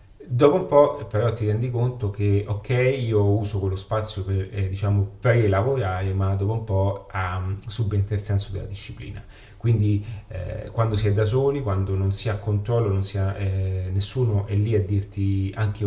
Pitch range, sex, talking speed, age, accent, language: 100-115 Hz, male, 185 wpm, 30-49, native, Italian